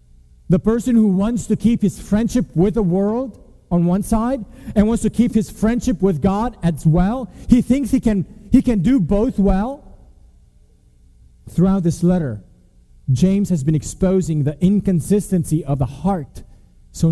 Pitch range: 135-200 Hz